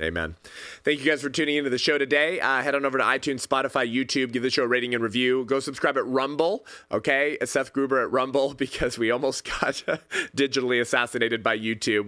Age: 20-39